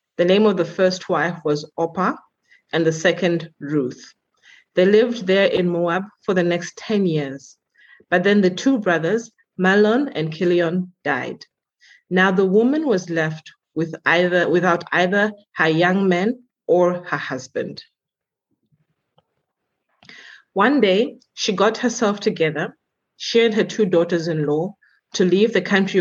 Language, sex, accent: English, female, South African